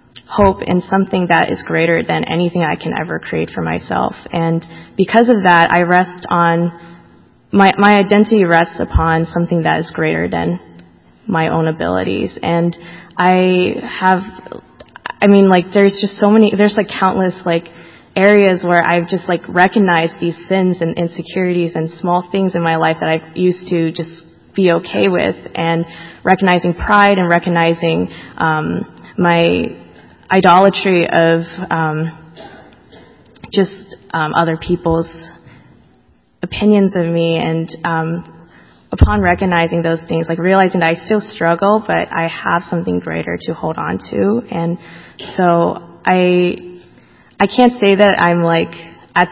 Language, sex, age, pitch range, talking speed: English, female, 20-39, 165-185 Hz, 145 wpm